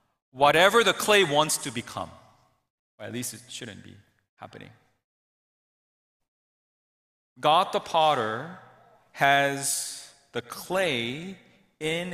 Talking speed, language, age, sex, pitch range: 100 wpm, English, 30-49, male, 120-185 Hz